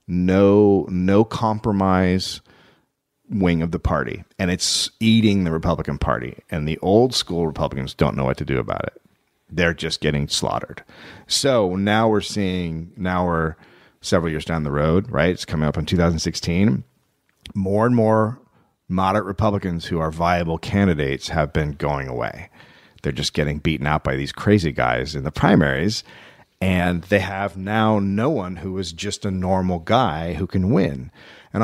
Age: 40-59